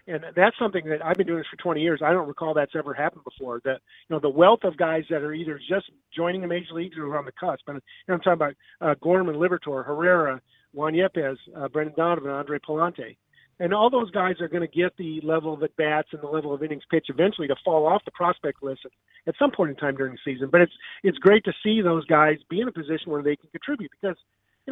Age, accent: 50-69, American